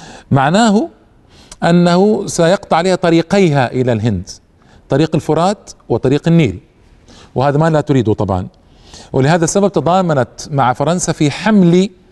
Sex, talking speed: male, 115 wpm